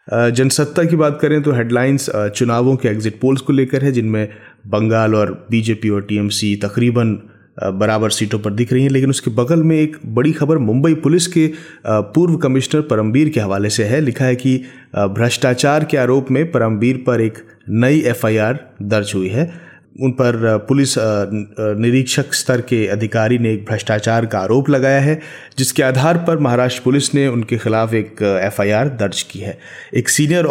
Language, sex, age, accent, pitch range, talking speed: Hindi, male, 30-49, native, 110-145 Hz, 170 wpm